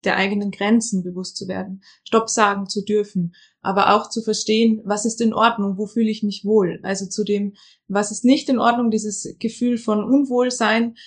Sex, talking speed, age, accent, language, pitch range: female, 190 wpm, 20-39, German, German, 205-225 Hz